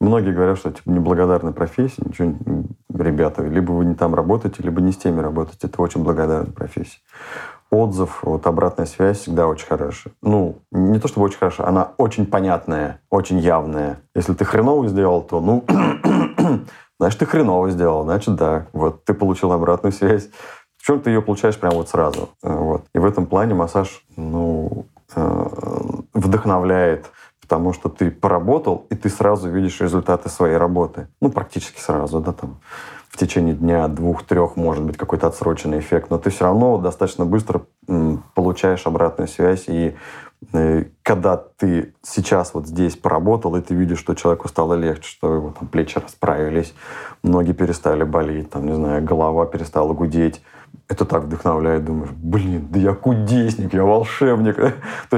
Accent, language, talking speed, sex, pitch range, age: native, Russian, 160 wpm, male, 85-100 Hz, 30-49